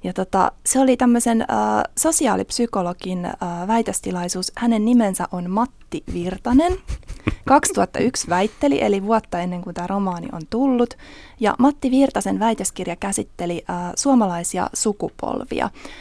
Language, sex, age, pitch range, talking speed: Finnish, female, 20-39, 180-240 Hz, 100 wpm